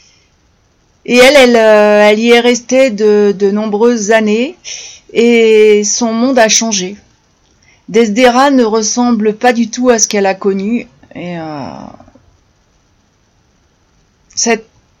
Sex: female